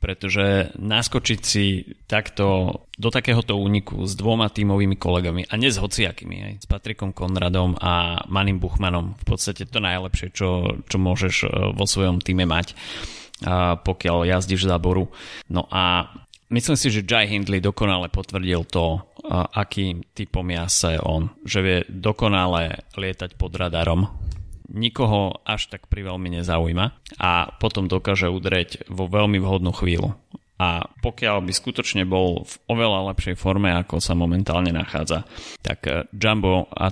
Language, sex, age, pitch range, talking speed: Slovak, male, 30-49, 90-100 Hz, 140 wpm